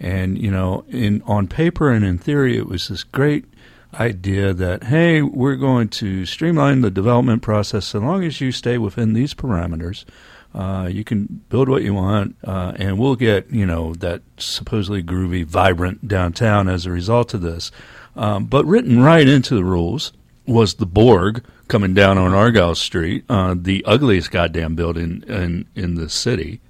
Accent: American